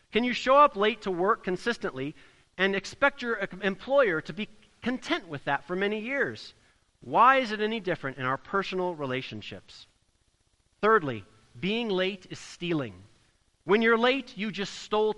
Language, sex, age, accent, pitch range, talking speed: English, male, 40-59, American, 150-240 Hz, 160 wpm